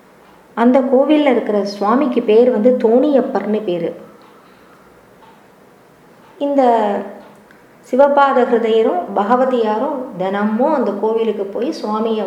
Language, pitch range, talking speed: Tamil, 210-265 Hz, 80 wpm